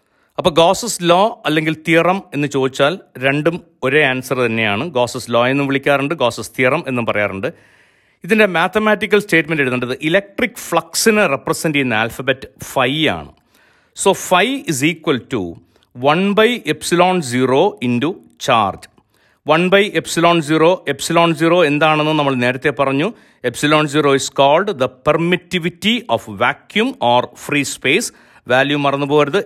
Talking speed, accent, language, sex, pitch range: 130 wpm, native, Malayalam, male, 130-180 Hz